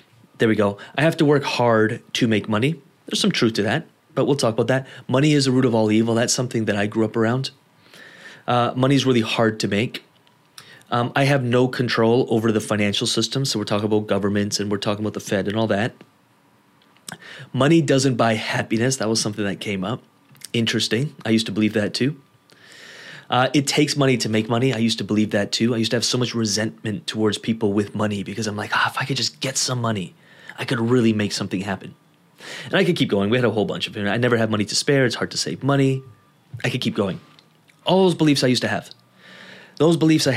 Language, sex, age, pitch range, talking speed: English, male, 30-49, 110-140 Hz, 240 wpm